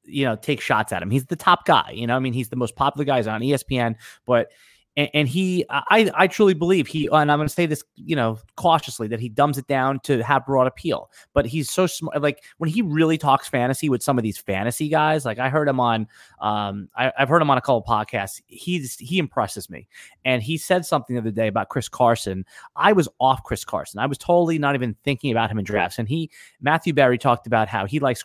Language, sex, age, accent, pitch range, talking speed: English, male, 30-49, American, 115-150 Hz, 245 wpm